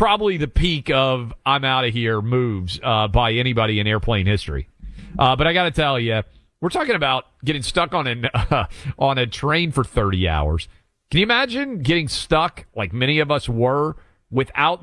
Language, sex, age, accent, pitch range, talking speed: English, male, 40-59, American, 110-155 Hz, 185 wpm